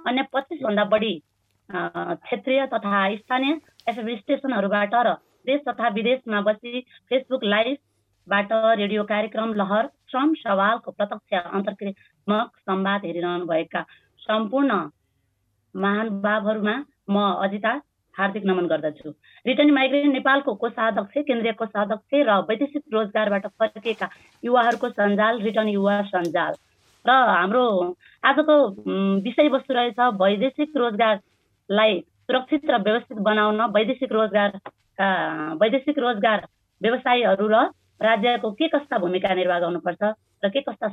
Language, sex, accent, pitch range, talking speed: English, female, Indian, 190-250 Hz, 105 wpm